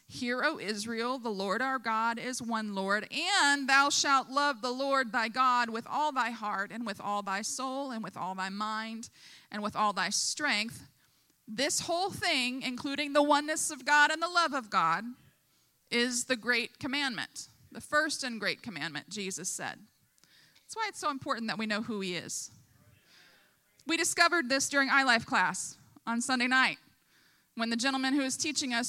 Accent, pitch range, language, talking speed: American, 225-290 Hz, English, 185 wpm